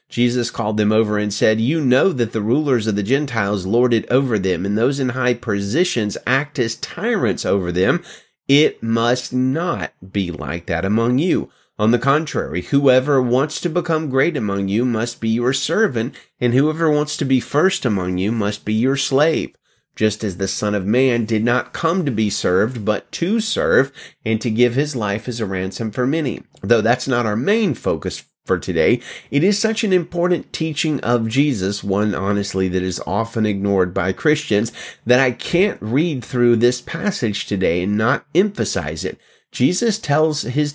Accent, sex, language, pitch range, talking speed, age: American, male, English, 105-150 Hz, 185 wpm, 30-49